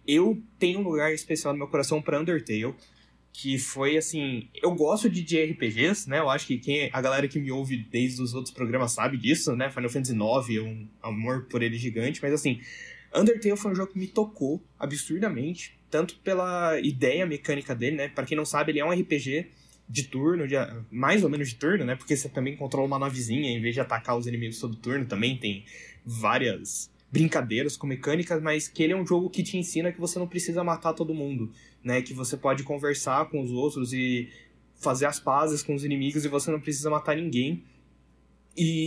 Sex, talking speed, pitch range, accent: male, 205 wpm, 125-160 Hz, Brazilian